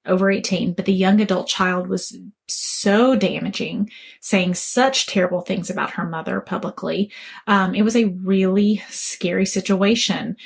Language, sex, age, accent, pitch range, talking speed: English, female, 20-39, American, 190-235 Hz, 145 wpm